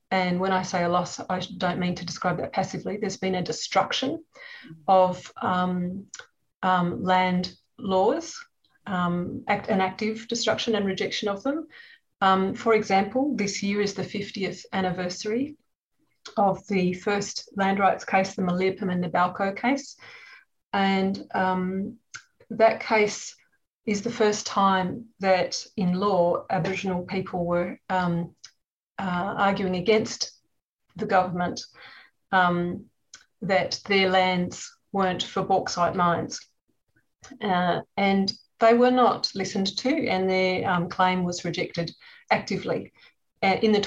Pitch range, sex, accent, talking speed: 185-220 Hz, female, Australian, 130 wpm